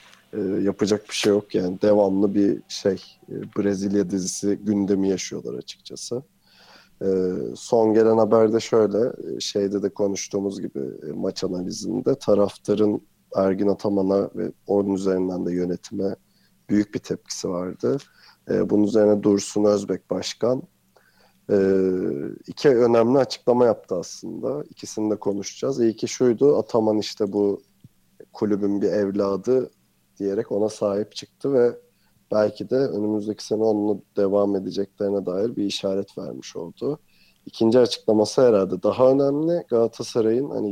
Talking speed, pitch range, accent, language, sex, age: 120 wpm, 100-115 Hz, native, Turkish, male, 40-59